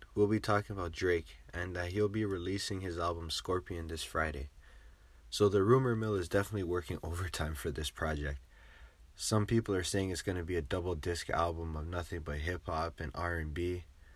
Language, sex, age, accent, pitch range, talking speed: English, male, 20-39, American, 75-95 Hz, 185 wpm